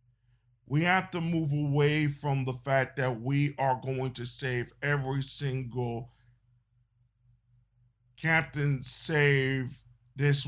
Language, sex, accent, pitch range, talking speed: English, male, American, 120-150 Hz, 110 wpm